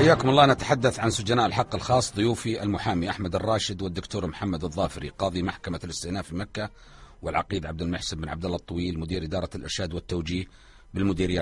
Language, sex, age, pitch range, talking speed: Arabic, male, 40-59, 90-135 Hz, 160 wpm